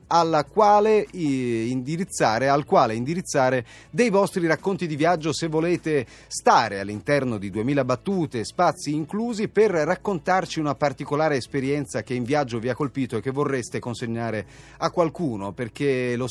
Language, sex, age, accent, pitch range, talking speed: Italian, male, 30-49, native, 115-165 Hz, 135 wpm